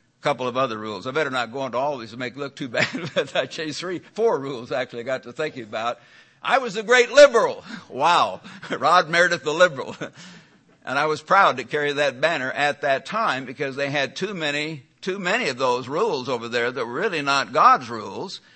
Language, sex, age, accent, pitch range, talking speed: English, male, 60-79, American, 125-160 Hz, 225 wpm